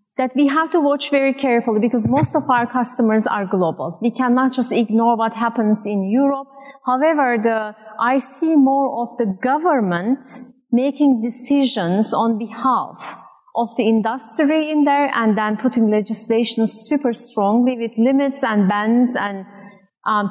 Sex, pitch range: female, 215-270 Hz